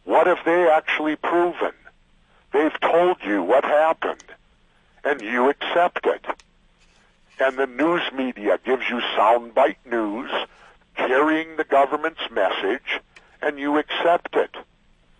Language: English